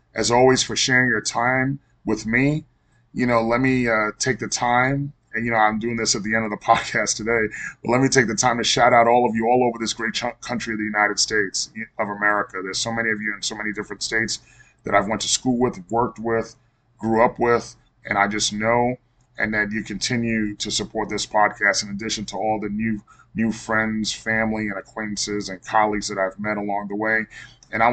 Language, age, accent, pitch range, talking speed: English, 30-49, American, 110-135 Hz, 230 wpm